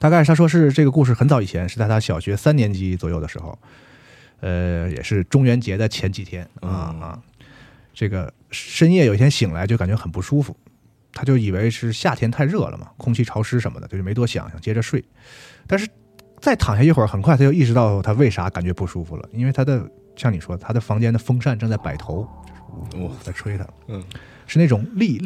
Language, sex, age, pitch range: English, male, 20-39, 100-135 Hz